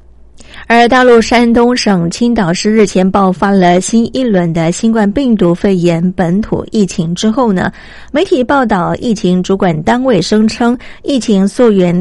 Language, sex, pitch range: Chinese, female, 185-245 Hz